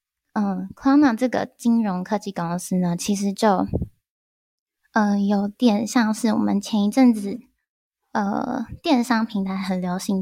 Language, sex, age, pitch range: Chinese, female, 10-29, 185-235 Hz